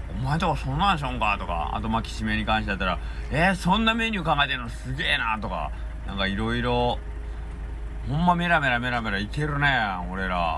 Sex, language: male, Japanese